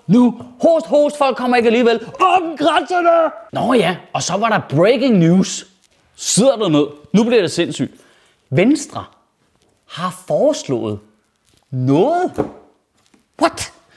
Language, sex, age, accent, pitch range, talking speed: Danish, male, 30-49, native, 170-265 Hz, 130 wpm